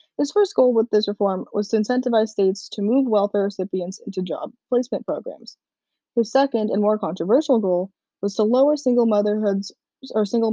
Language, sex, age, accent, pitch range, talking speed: English, female, 10-29, American, 190-245 Hz, 175 wpm